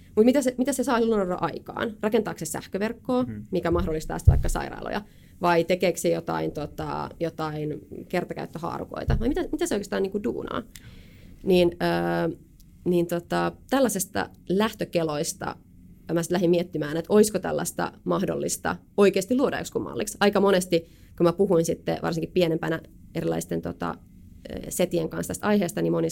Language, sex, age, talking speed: Finnish, female, 30-49, 140 wpm